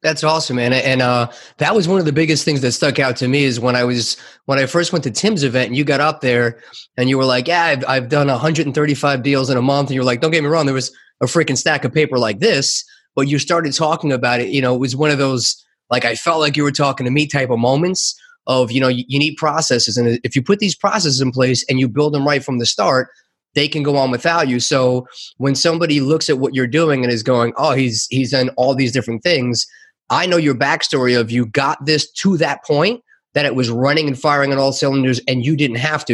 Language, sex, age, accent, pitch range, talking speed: English, male, 30-49, American, 125-155 Hz, 265 wpm